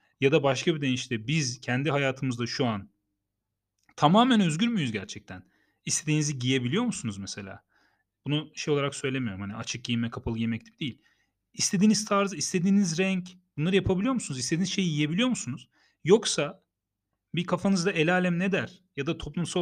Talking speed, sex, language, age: 150 wpm, male, Turkish, 40-59